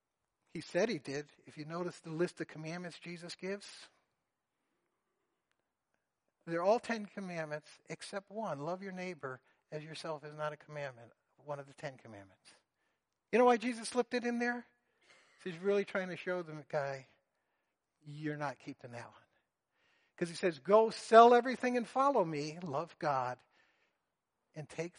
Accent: American